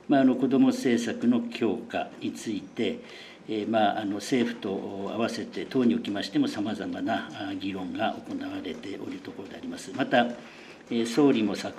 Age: 60-79